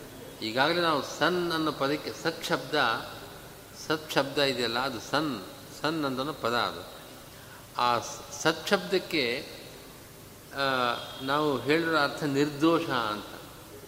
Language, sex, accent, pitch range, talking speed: Kannada, male, native, 135-160 Hz, 105 wpm